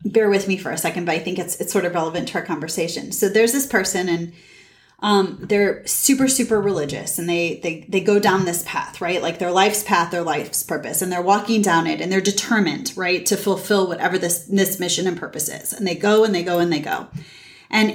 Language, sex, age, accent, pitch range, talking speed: English, female, 30-49, American, 175-225 Hz, 235 wpm